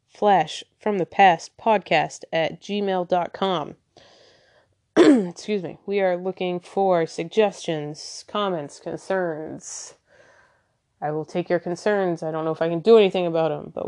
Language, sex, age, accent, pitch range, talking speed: English, female, 20-39, American, 170-210 Hz, 140 wpm